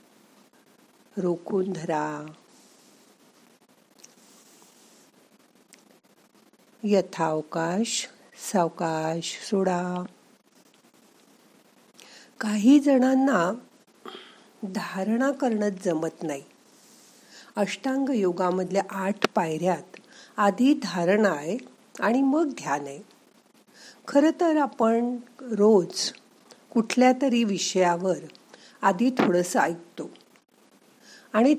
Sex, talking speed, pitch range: female, 65 wpm, 180-250 Hz